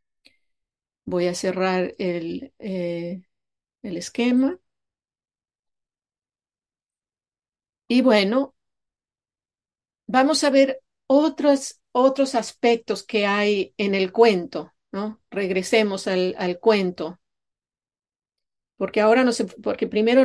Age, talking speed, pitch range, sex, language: 40-59, 90 wpm, 195-245 Hz, female, English